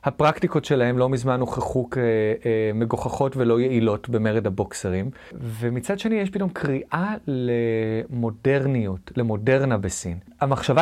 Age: 30-49